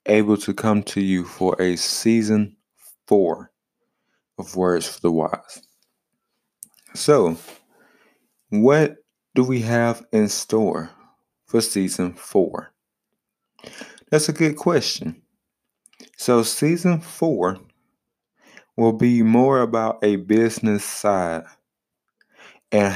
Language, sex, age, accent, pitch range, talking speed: English, male, 20-39, American, 95-125 Hz, 100 wpm